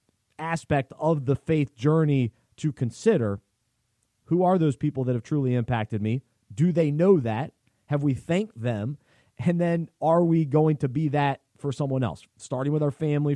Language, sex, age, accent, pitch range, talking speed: English, male, 30-49, American, 125-165 Hz, 175 wpm